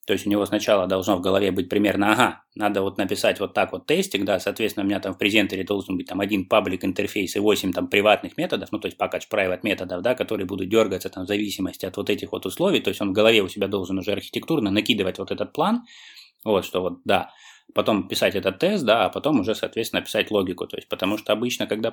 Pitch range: 95-105 Hz